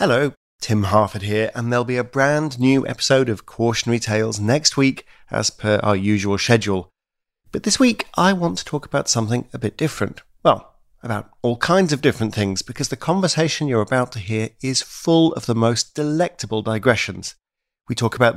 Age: 40-59